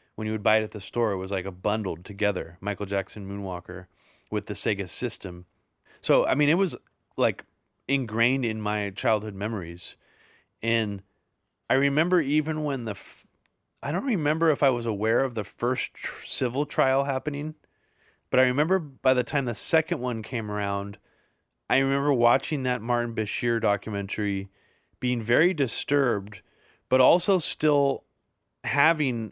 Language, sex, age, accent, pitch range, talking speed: English, male, 30-49, American, 105-140 Hz, 155 wpm